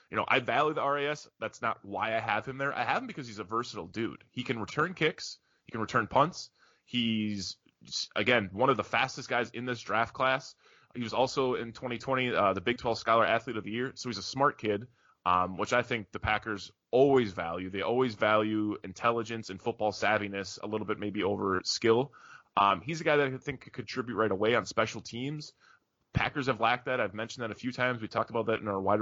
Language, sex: English, male